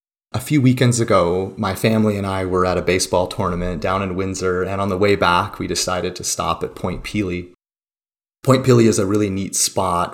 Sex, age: male, 30-49